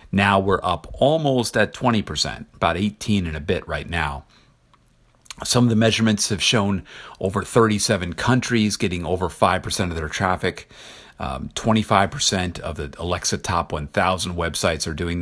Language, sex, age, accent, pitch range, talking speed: English, male, 50-69, American, 85-110 Hz, 150 wpm